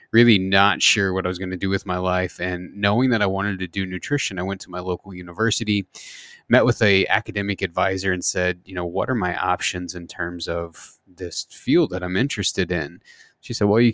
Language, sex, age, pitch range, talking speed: English, male, 20-39, 90-105 Hz, 225 wpm